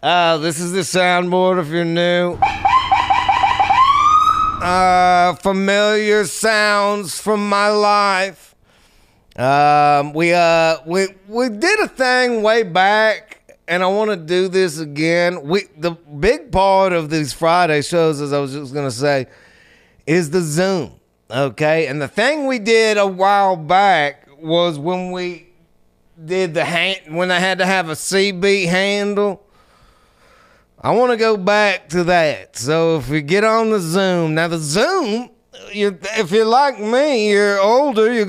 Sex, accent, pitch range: male, American, 165-205 Hz